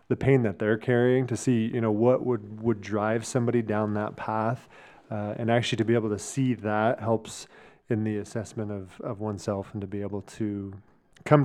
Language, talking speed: English, 205 wpm